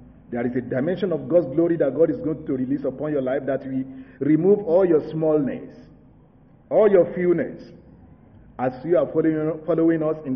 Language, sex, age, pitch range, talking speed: English, male, 50-69, 130-195 Hz, 180 wpm